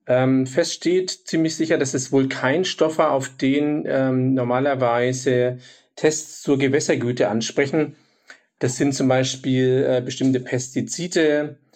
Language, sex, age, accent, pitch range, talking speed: German, male, 40-59, German, 125-140 Hz, 135 wpm